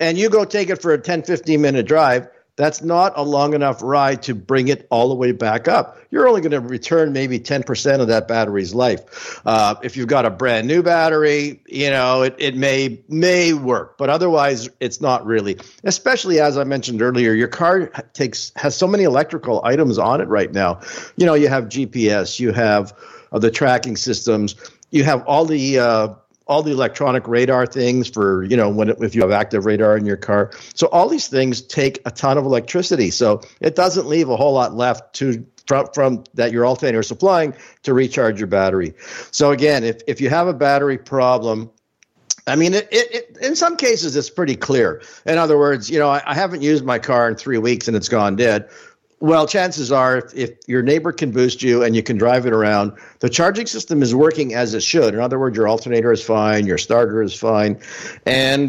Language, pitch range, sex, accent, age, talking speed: English, 115-155 Hz, male, American, 50-69, 215 wpm